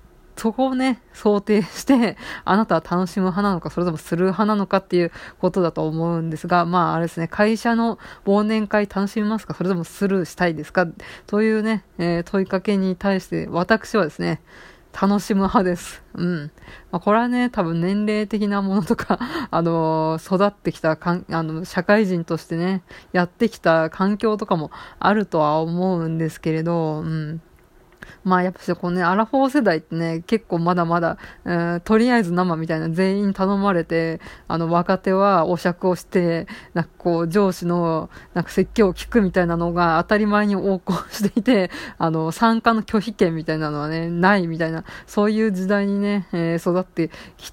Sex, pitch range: female, 165-205 Hz